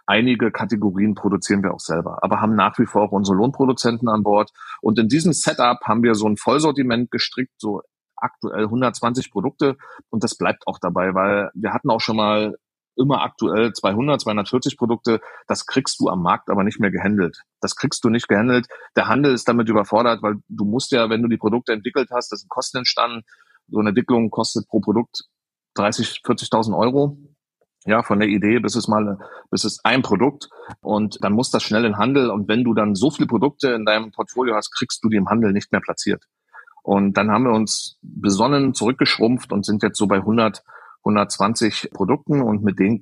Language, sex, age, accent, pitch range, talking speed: German, male, 30-49, German, 100-120 Hz, 200 wpm